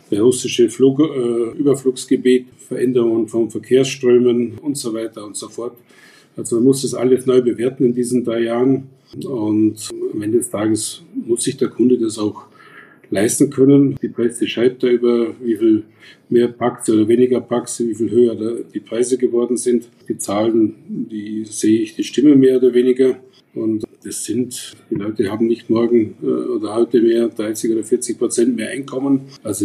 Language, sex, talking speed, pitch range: German, male, 170 wpm, 115-140 Hz